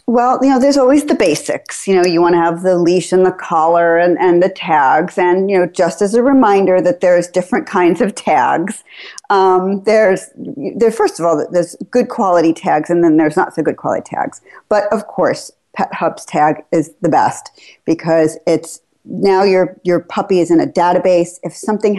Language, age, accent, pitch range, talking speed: English, 40-59, American, 170-250 Hz, 200 wpm